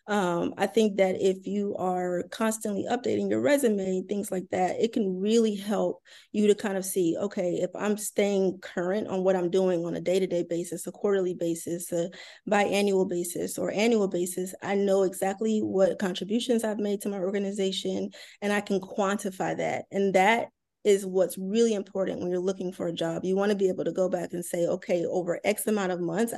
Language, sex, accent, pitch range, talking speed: English, female, American, 180-205 Hz, 200 wpm